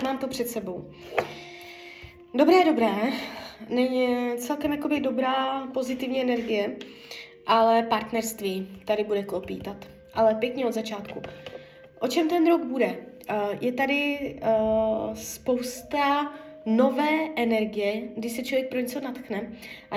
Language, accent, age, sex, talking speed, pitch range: Czech, native, 20-39, female, 110 wpm, 220-270 Hz